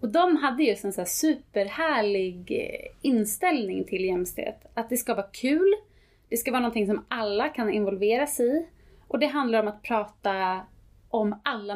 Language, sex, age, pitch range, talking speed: Swedish, female, 30-49, 205-275 Hz, 170 wpm